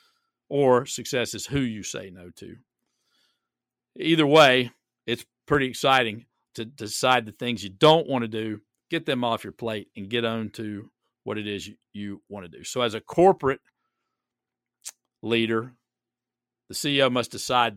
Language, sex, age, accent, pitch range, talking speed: English, male, 50-69, American, 110-130 Hz, 160 wpm